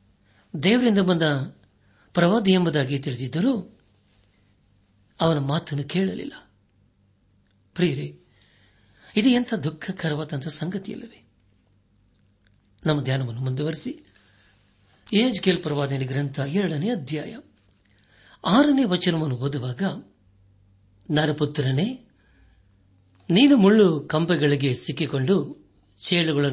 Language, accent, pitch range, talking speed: Kannada, native, 100-165 Hz, 65 wpm